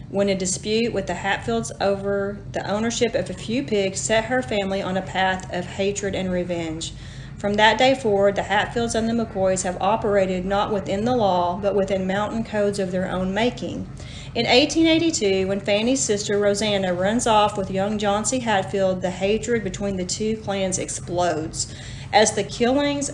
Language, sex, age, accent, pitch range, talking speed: English, female, 40-59, American, 180-210 Hz, 180 wpm